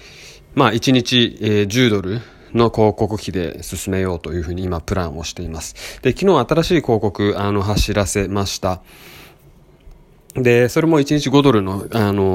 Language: Japanese